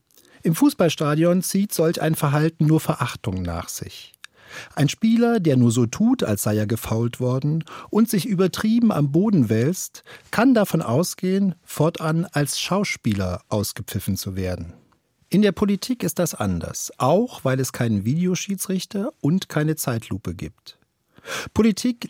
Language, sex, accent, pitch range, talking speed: German, male, German, 115-175 Hz, 140 wpm